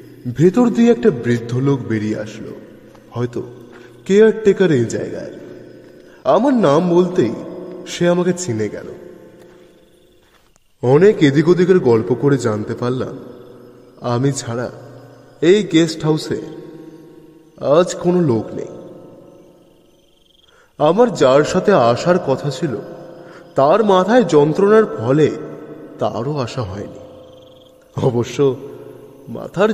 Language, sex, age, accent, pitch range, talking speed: Bengali, male, 20-39, native, 120-185 Hz, 35 wpm